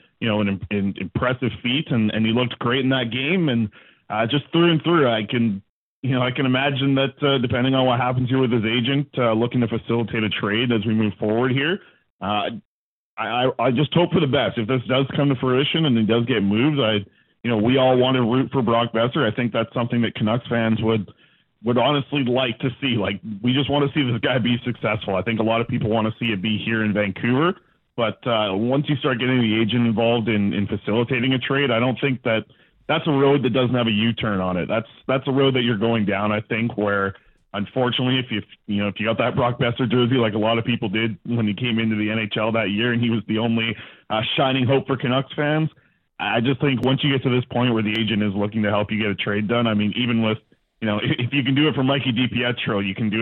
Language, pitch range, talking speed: English, 110-130 Hz, 260 wpm